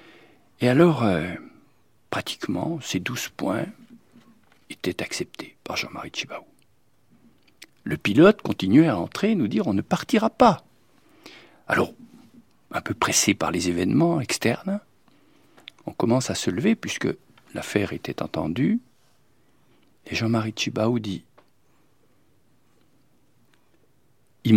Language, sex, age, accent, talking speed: French, male, 50-69, French, 110 wpm